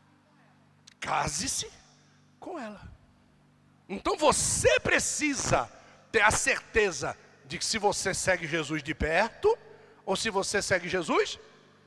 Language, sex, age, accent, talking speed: Portuguese, male, 60-79, Brazilian, 110 wpm